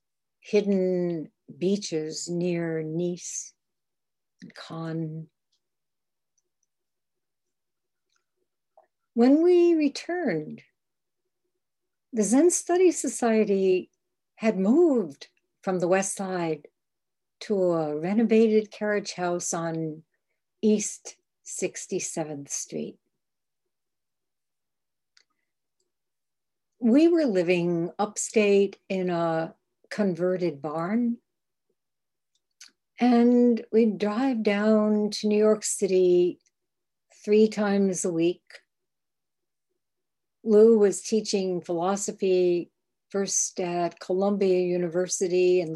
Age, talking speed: 60-79, 75 wpm